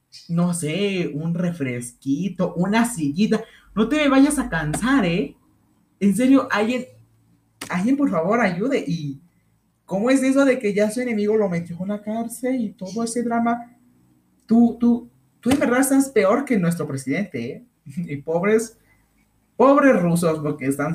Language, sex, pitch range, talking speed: Spanish, male, 135-215 Hz, 160 wpm